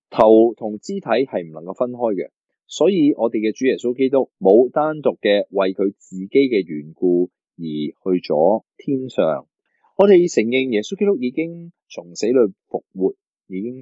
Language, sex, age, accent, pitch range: Chinese, male, 20-39, native, 95-145 Hz